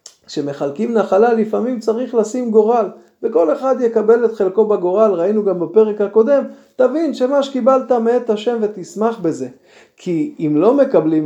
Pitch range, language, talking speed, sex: 170-215 Hz, Hebrew, 145 wpm, male